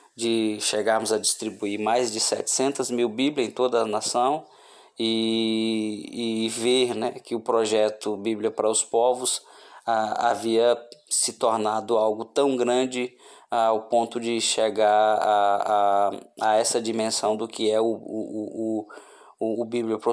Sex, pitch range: male, 110-120 Hz